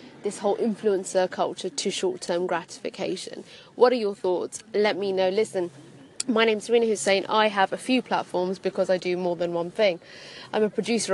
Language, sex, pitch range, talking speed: English, female, 180-215 Hz, 190 wpm